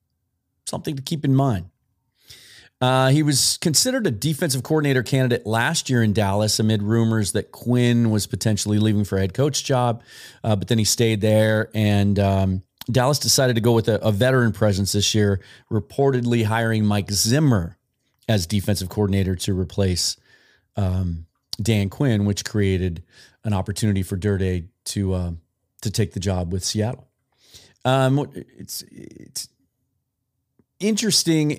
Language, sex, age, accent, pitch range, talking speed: English, male, 40-59, American, 105-130 Hz, 150 wpm